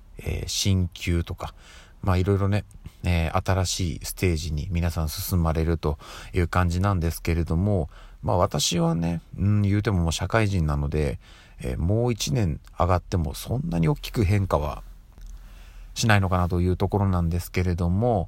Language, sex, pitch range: Japanese, male, 85-100 Hz